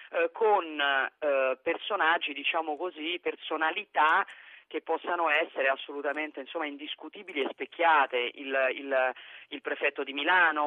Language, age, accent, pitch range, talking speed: Italian, 40-59, native, 140-180 Hz, 115 wpm